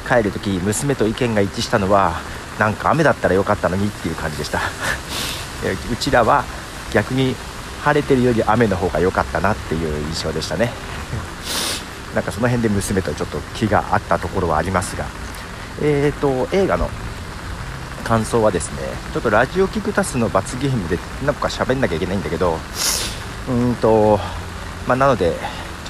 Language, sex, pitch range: Japanese, male, 85-120 Hz